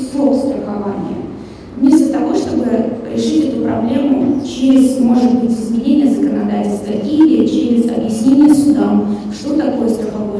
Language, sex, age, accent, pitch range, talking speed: Russian, female, 20-39, native, 230-285 Hz, 110 wpm